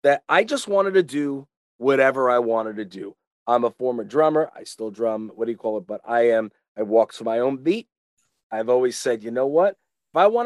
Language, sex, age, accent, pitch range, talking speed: English, male, 30-49, American, 115-165 Hz, 235 wpm